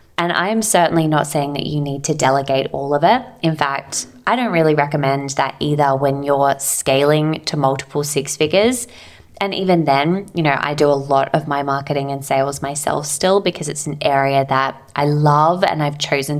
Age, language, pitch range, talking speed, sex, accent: 20-39, English, 140-160 Hz, 200 wpm, female, Australian